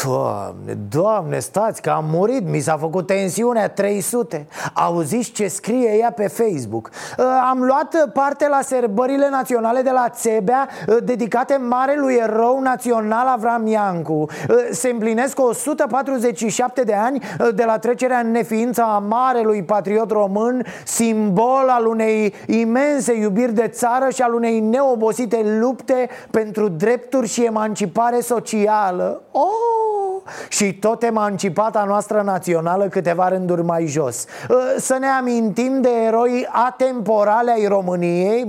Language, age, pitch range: Romanian, 30-49, 195-250 Hz